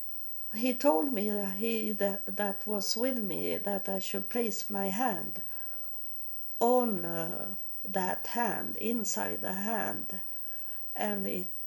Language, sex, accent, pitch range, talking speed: English, female, Swedish, 195-225 Hz, 130 wpm